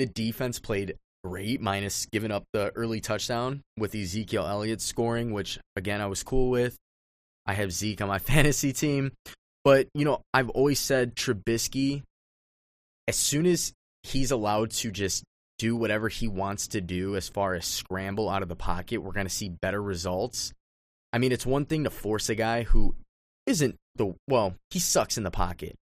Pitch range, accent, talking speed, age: 95-125 Hz, American, 185 wpm, 20-39